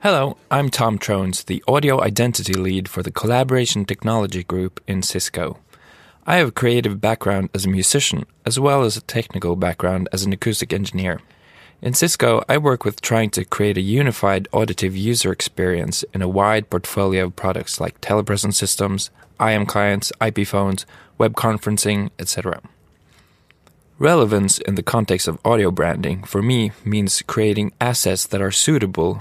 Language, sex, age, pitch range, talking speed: English, male, 20-39, 95-120 Hz, 160 wpm